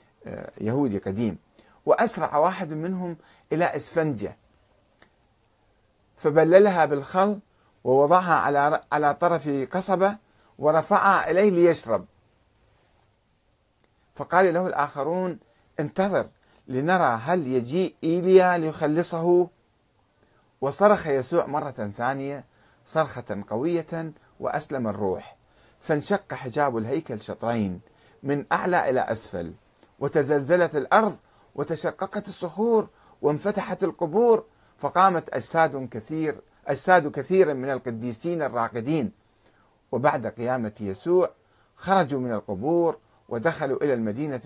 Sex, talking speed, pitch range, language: male, 85 wpm, 115-170 Hz, Arabic